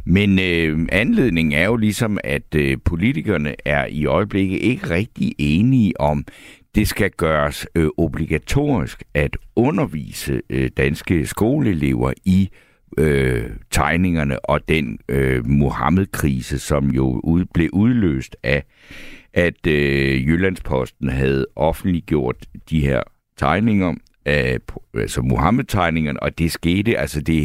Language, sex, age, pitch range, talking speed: Danish, male, 60-79, 75-100 Hz, 125 wpm